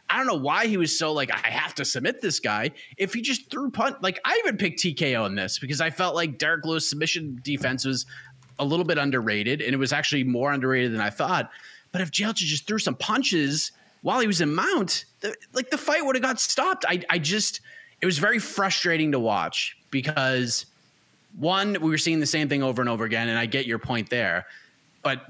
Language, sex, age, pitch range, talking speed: English, male, 30-49, 125-185 Hz, 230 wpm